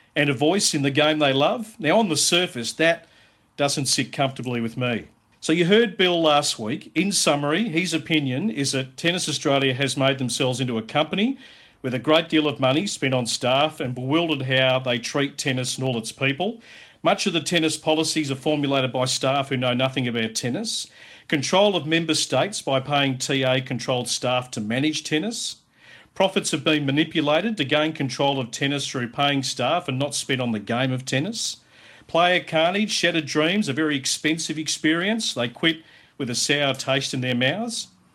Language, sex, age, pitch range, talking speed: English, male, 50-69, 130-160 Hz, 185 wpm